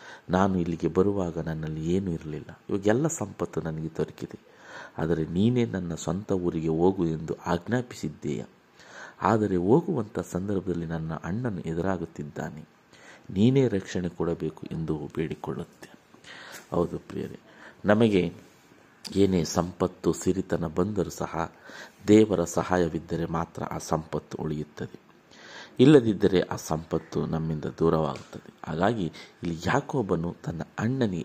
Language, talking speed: Kannada, 100 wpm